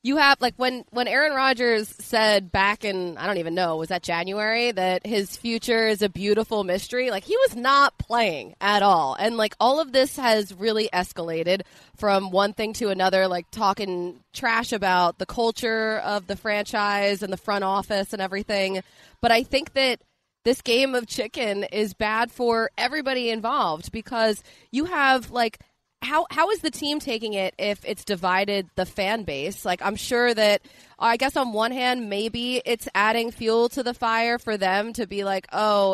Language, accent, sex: English, American, female